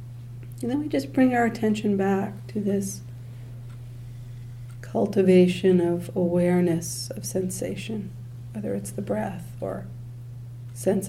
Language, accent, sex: English, American, female